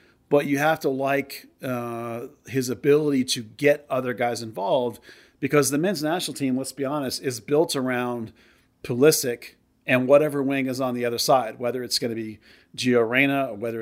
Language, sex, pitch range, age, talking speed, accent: English, male, 120-140 Hz, 40-59, 180 wpm, American